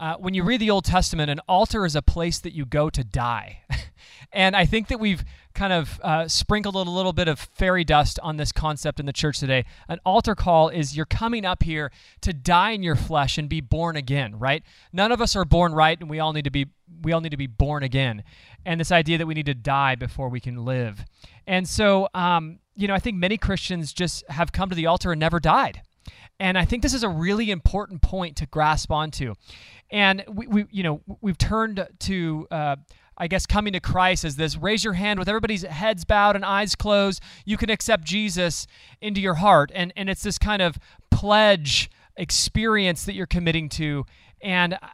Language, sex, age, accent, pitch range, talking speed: English, male, 20-39, American, 150-195 Hz, 220 wpm